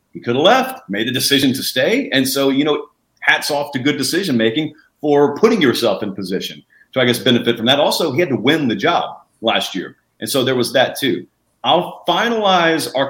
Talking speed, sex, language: 220 wpm, male, English